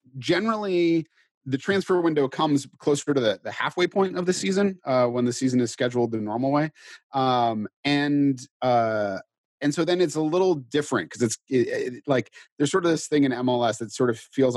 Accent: American